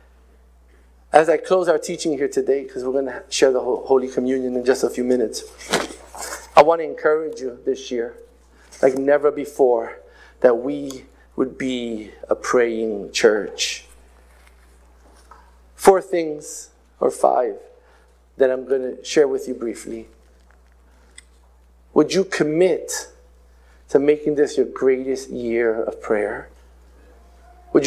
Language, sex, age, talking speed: English, male, 50-69, 130 wpm